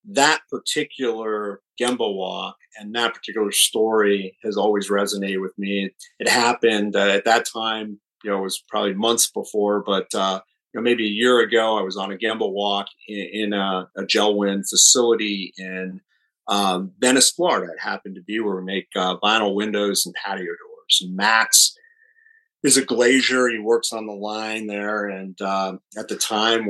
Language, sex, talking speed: English, male, 180 wpm